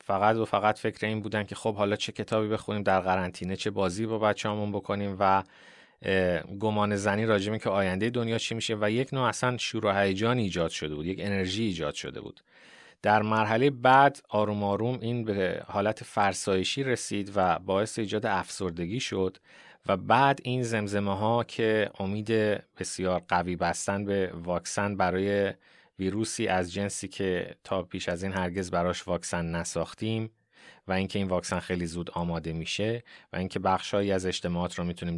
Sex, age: male, 30-49